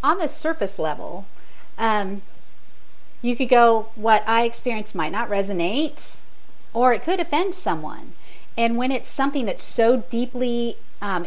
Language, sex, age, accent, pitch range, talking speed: English, female, 40-59, American, 190-245 Hz, 145 wpm